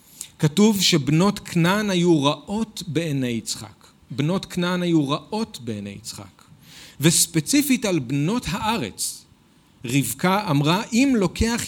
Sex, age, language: male, 40-59, Hebrew